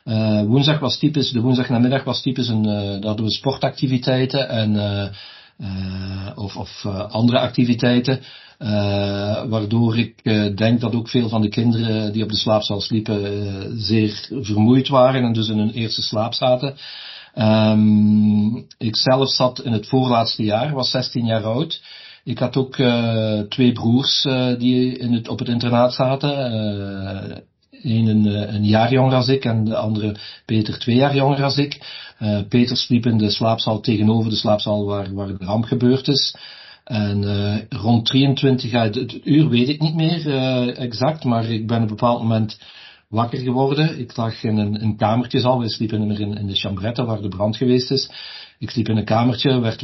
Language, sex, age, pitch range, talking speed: Dutch, male, 50-69, 105-125 Hz, 180 wpm